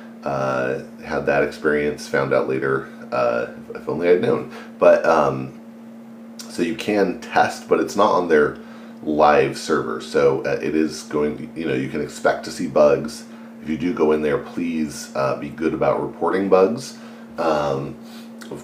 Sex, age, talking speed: male, 30-49, 175 wpm